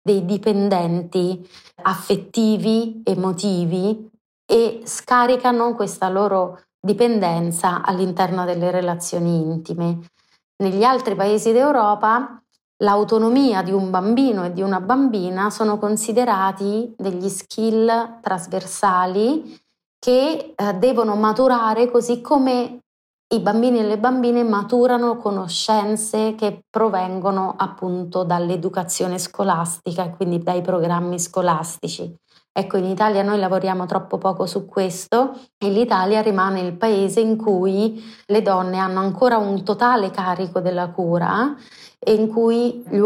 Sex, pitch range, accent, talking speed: female, 185-225 Hz, native, 115 wpm